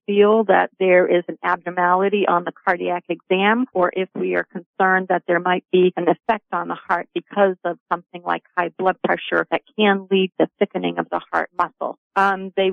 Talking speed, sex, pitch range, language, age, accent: 205 wpm, female, 180-210 Hz, English, 50-69, American